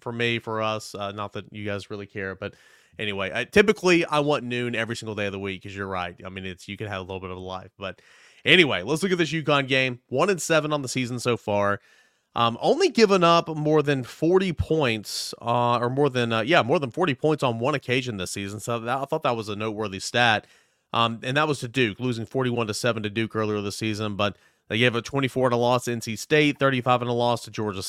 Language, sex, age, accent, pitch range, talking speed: English, male, 30-49, American, 105-135 Hz, 250 wpm